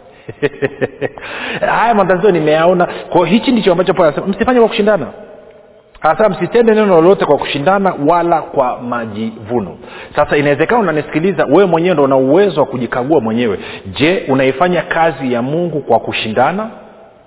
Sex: male